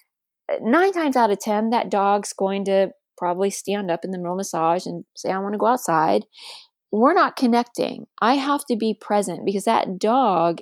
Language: English